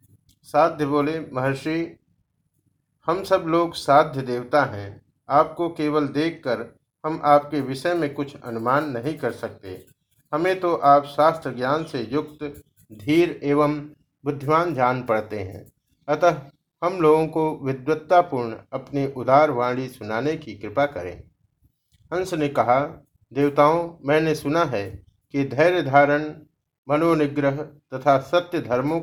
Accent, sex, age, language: native, male, 50-69, Hindi